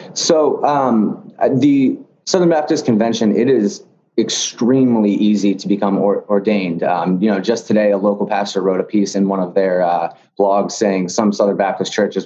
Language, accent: English, American